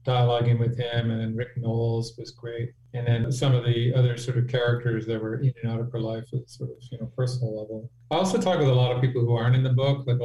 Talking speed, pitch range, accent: 270 wpm, 115-125 Hz, American